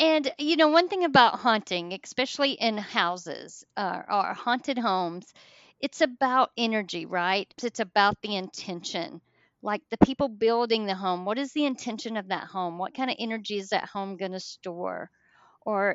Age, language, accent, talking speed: 50-69, English, American, 175 wpm